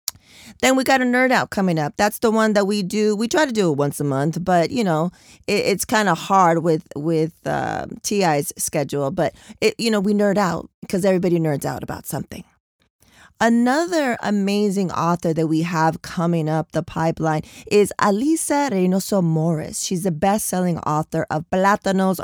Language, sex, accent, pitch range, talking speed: English, female, American, 160-200 Hz, 185 wpm